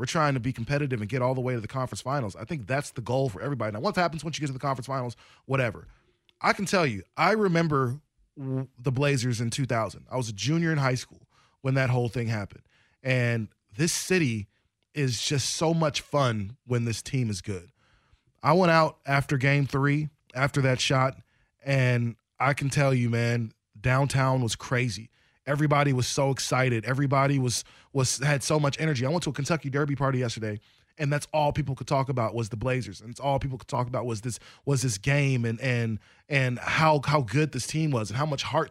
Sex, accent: male, American